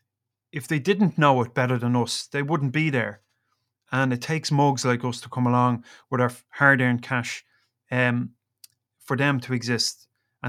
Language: English